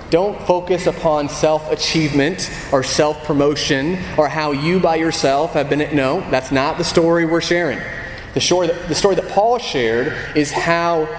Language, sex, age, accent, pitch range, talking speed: English, male, 30-49, American, 125-190 Hz, 155 wpm